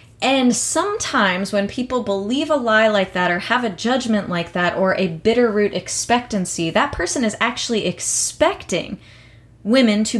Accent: American